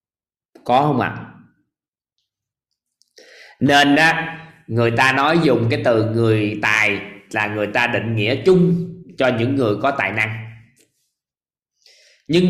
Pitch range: 115-160 Hz